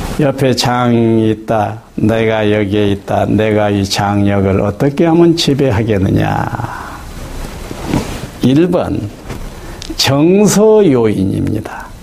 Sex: male